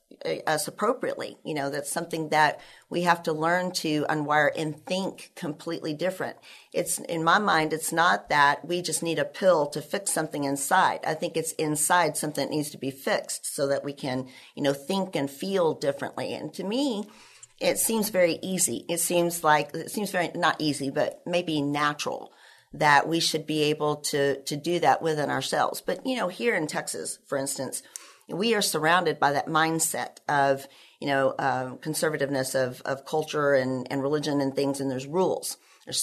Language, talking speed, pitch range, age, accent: English, 190 wpm, 145-180 Hz, 50-69, American